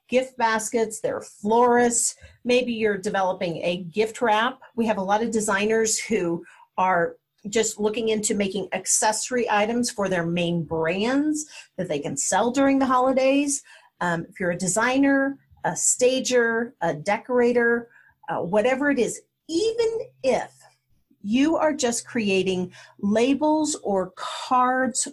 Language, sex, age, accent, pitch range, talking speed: English, female, 40-59, American, 200-260 Hz, 135 wpm